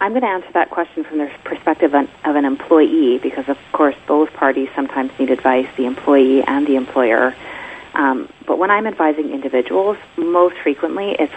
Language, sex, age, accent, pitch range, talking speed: English, female, 30-49, American, 140-180 Hz, 180 wpm